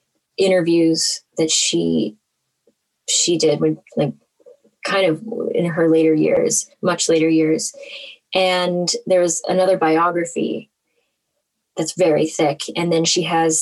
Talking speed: 120 wpm